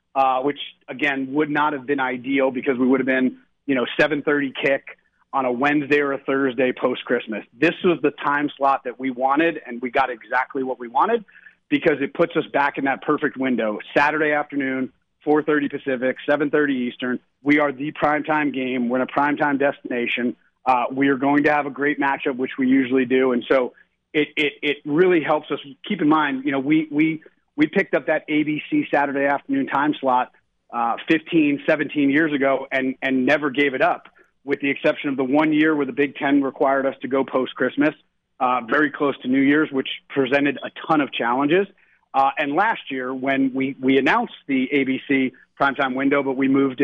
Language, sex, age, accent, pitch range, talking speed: English, male, 30-49, American, 135-150 Hz, 200 wpm